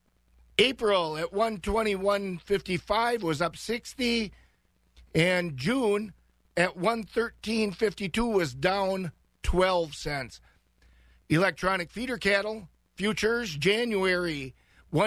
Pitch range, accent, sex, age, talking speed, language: 165-205 Hz, American, male, 50-69, 85 wpm, English